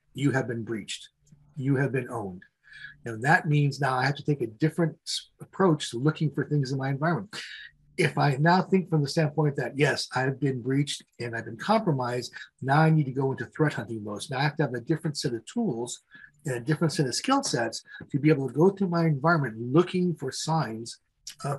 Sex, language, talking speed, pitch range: male, English, 220 wpm, 130-155 Hz